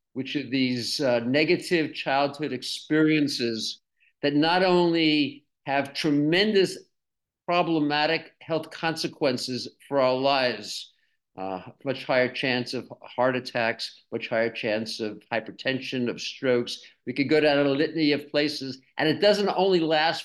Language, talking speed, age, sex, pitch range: English, 135 wpm, 50-69, male, 130-160 Hz